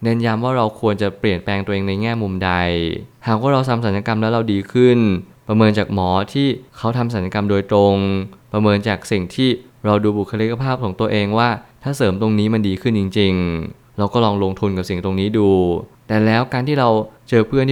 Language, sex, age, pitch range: Thai, male, 20-39, 100-115 Hz